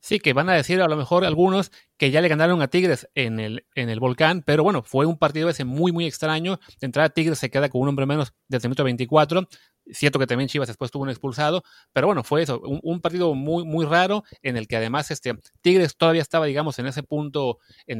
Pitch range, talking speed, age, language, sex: 125-155 Hz, 240 wpm, 30-49, Spanish, male